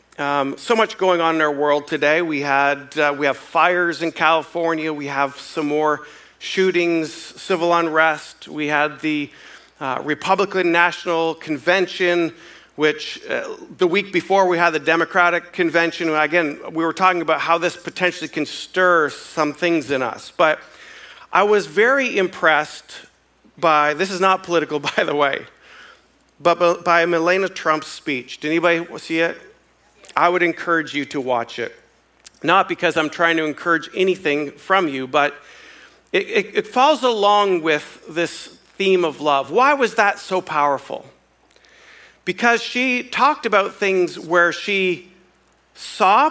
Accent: American